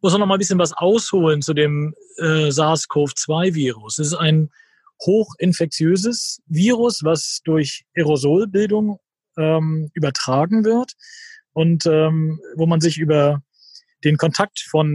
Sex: male